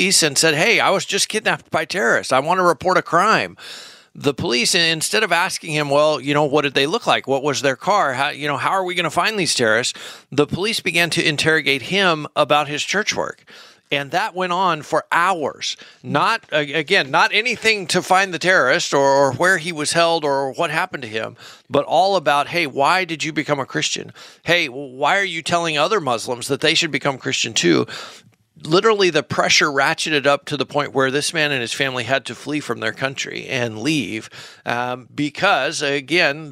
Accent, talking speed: American, 210 wpm